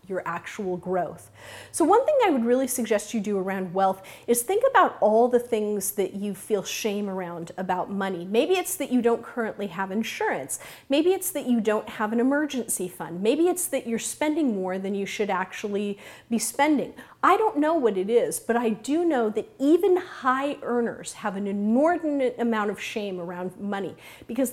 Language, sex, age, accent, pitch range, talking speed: English, female, 40-59, American, 205-270 Hz, 195 wpm